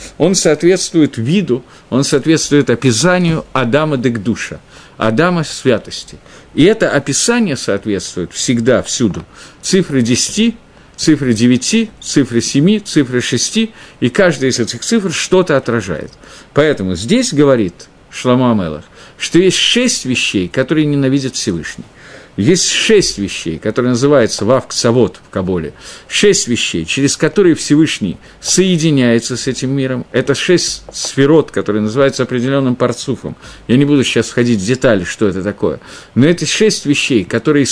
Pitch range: 120-160 Hz